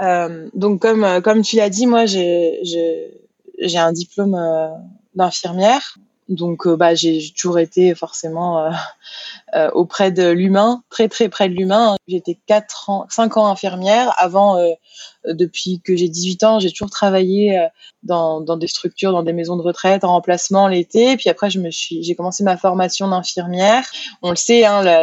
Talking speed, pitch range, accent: 170 wpm, 175-210 Hz, French